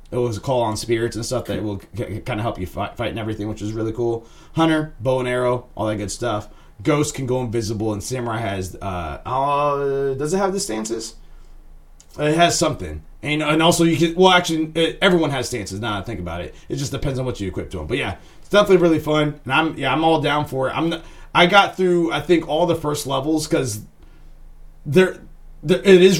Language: English